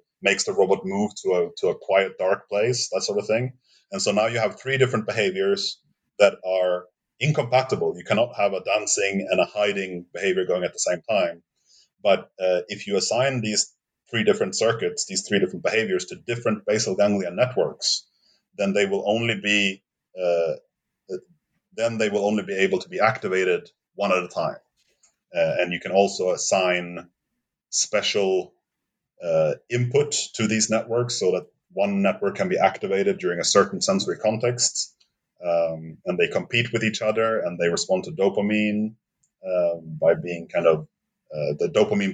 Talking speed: 170 wpm